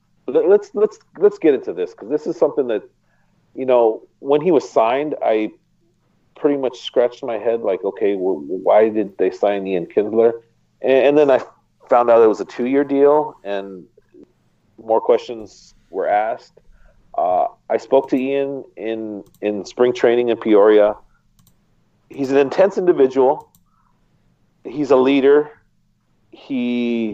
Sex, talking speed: male, 150 wpm